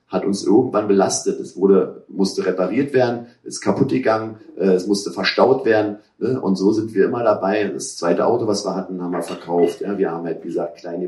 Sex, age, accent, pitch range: male, 40-59, German, 95-110 Hz